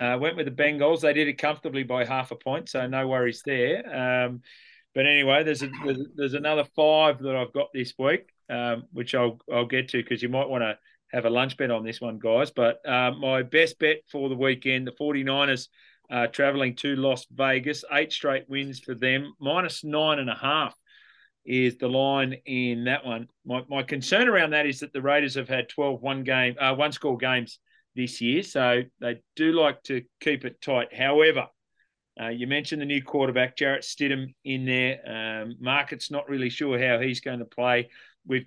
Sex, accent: male, Australian